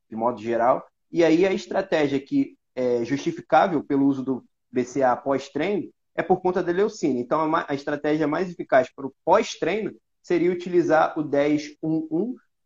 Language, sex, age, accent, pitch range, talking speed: Portuguese, male, 20-39, Brazilian, 145-200 Hz, 150 wpm